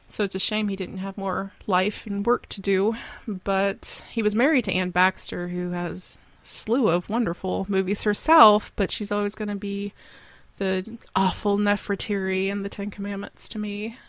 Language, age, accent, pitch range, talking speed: English, 20-39, American, 190-225 Hz, 185 wpm